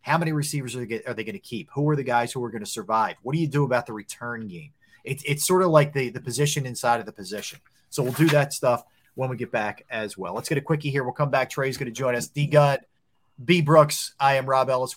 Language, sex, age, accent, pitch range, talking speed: English, male, 30-49, American, 115-145 Hz, 270 wpm